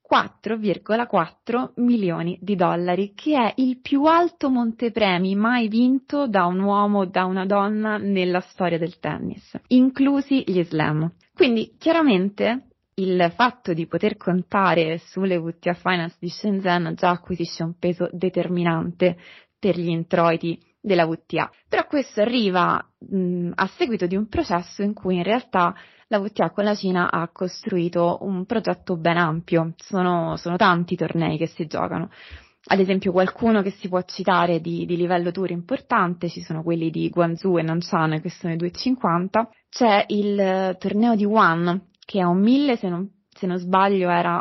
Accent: native